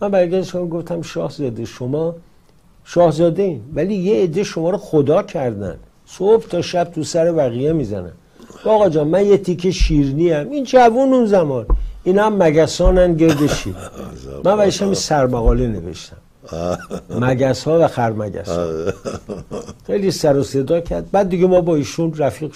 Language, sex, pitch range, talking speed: English, male, 125-160 Hz, 150 wpm